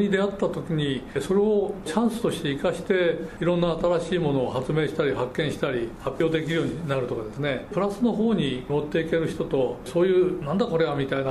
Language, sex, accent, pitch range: Japanese, male, native, 150-195 Hz